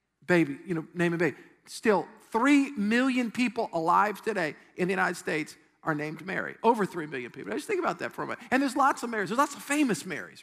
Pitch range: 180-270 Hz